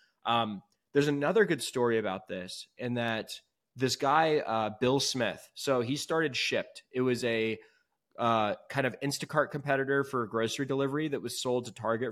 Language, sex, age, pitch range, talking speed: English, male, 20-39, 115-140 Hz, 170 wpm